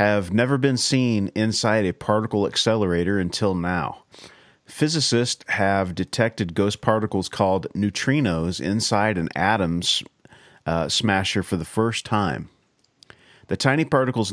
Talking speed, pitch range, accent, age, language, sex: 120 wpm, 90-115 Hz, American, 40-59, English, male